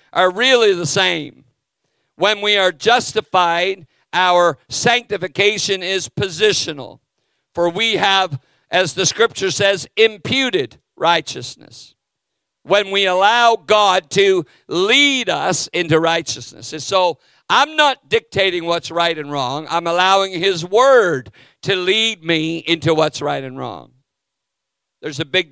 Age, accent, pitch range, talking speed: 50-69, American, 165-205 Hz, 125 wpm